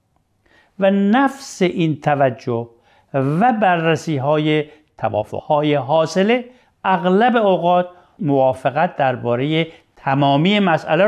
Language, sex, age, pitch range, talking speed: Persian, male, 50-69, 125-180 Hz, 85 wpm